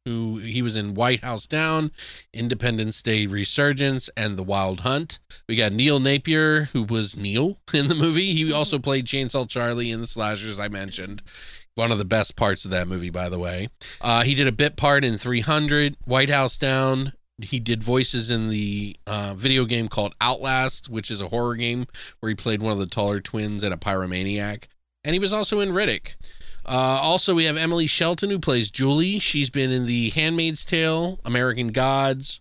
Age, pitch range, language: 20-39, 110-135 Hz, English